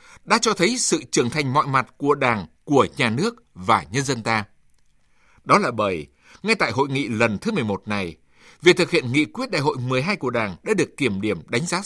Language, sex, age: Vietnamese, male, 60-79